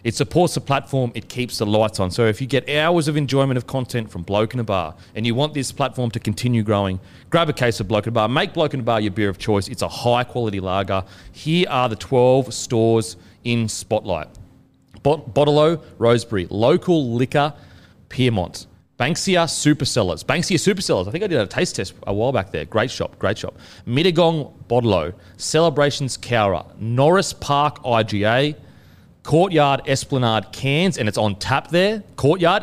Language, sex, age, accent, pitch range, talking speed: English, male, 30-49, Australian, 110-150 Hz, 180 wpm